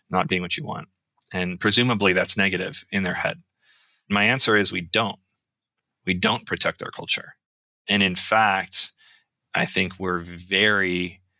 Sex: male